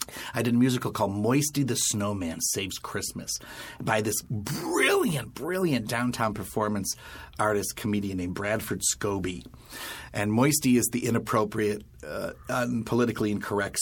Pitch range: 100-120 Hz